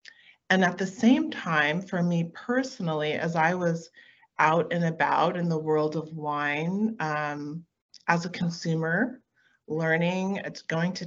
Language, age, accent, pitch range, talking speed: English, 30-49, American, 160-220 Hz, 140 wpm